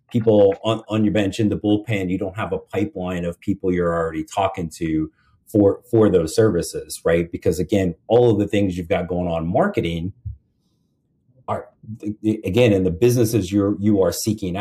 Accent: American